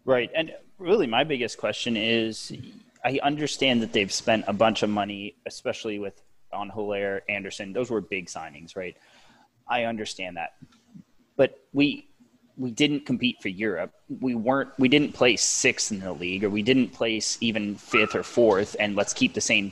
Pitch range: 100-130 Hz